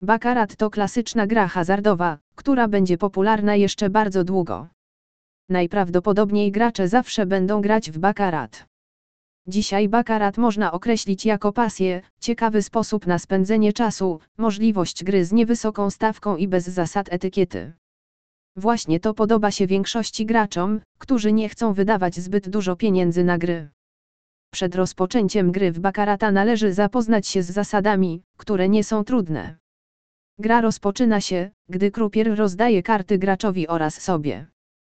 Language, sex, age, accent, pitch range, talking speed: Polish, female, 20-39, native, 185-220 Hz, 135 wpm